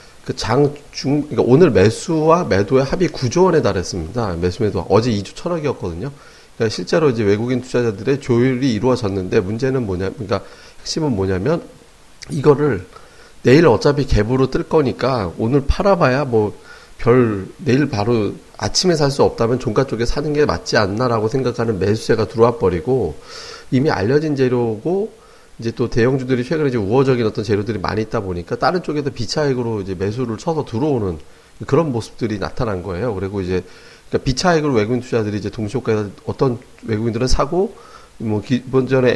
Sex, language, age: male, Korean, 40-59